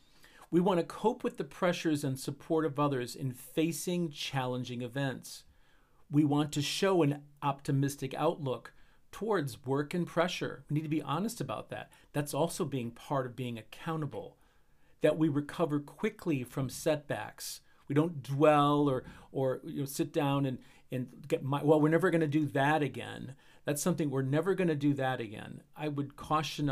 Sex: male